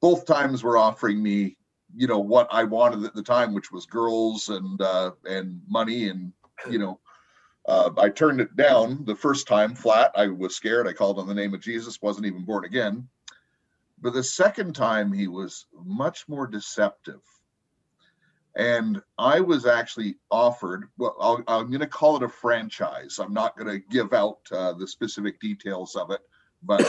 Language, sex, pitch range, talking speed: English, male, 110-155 Hz, 180 wpm